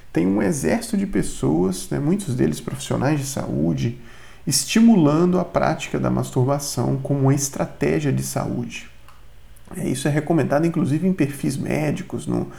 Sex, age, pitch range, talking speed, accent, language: male, 40-59, 105-165 Hz, 140 wpm, Brazilian, Portuguese